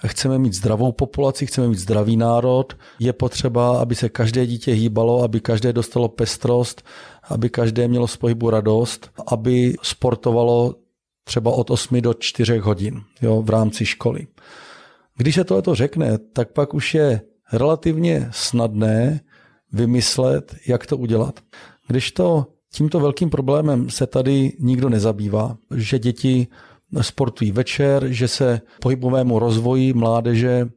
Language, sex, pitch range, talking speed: Czech, male, 115-135 Hz, 135 wpm